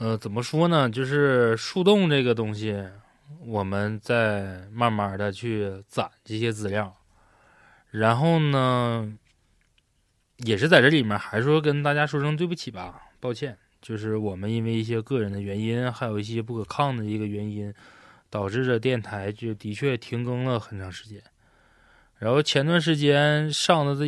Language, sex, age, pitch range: Chinese, male, 20-39, 105-145 Hz